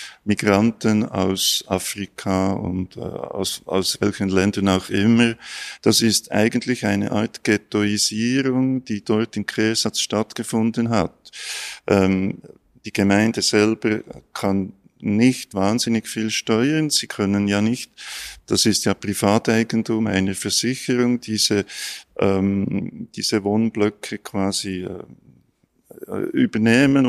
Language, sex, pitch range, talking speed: German, male, 100-120 Hz, 110 wpm